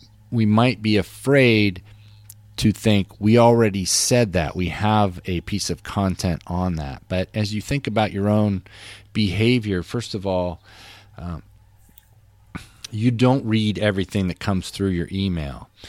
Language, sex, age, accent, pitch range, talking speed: English, male, 40-59, American, 90-115 Hz, 145 wpm